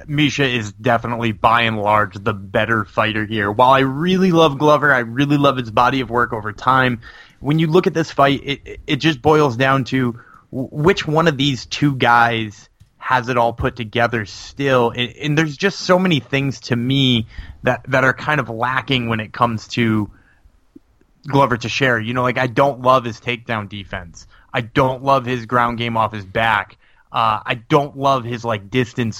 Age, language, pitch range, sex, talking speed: 20-39, English, 115-150 Hz, male, 195 wpm